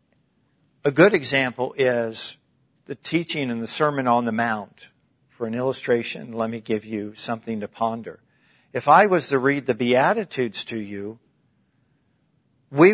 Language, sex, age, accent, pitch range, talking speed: English, male, 50-69, American, 120-145 Hz, 150 wpm